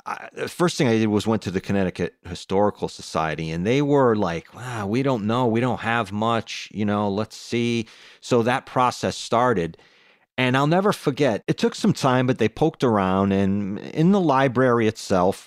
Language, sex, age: English, male, 40-59